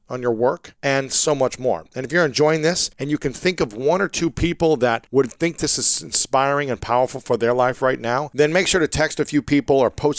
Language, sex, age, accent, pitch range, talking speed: English, male, 40-59, American, 120-150 Hz, 260 wpm